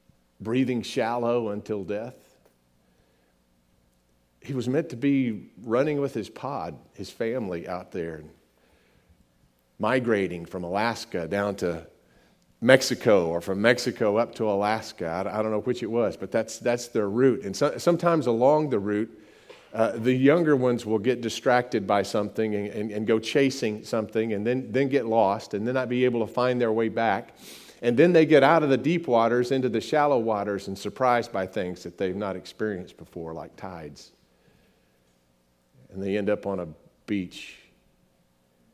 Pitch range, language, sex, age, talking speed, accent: 80-120 Hz, English, male, 50-69, 165 wpm, American